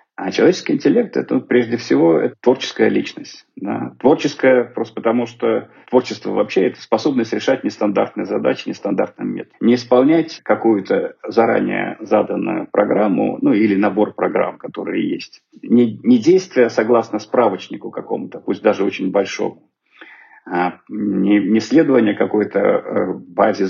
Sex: male